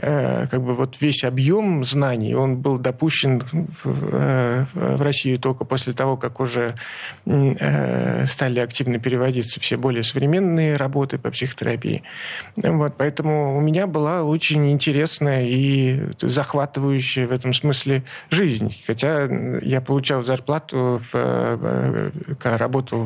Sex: male